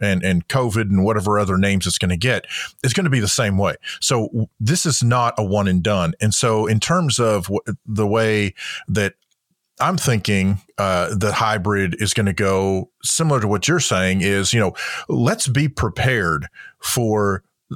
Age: 40-59